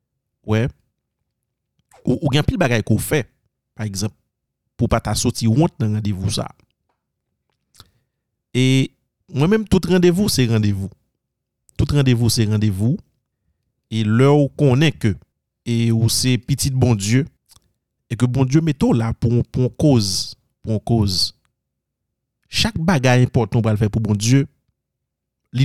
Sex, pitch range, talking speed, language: male, 110-135 Hz, 145 wpm, French